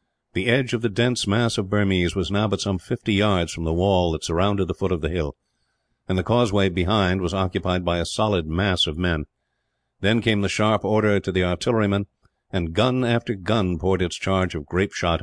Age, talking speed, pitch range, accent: 50-69, 210 wpm, 85-110 Hz, American